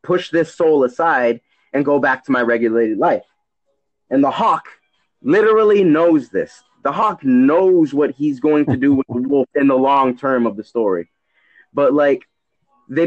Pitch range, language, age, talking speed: 130-175 Hz, English, 20-39, 175 wpm